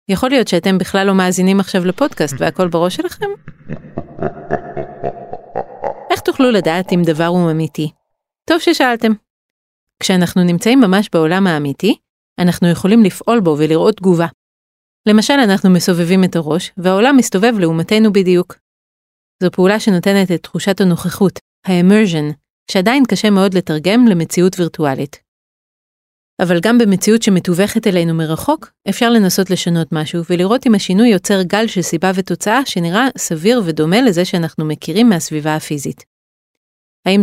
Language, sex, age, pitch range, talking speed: Hebrew, female, 30-49, 165-210 Hz, 130 wpm